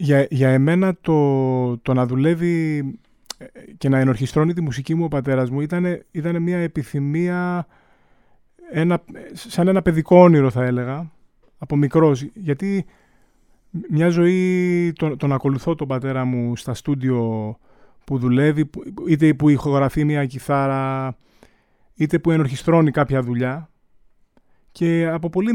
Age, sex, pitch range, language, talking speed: 30-49, male, 135-175 Hz, Greek, 125 wpm